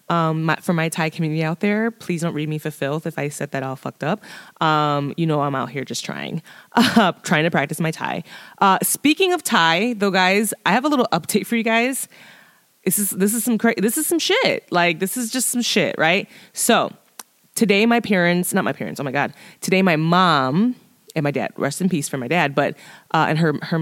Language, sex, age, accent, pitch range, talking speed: English, female, 20-39, American, 150-205 Hz, 235 wpm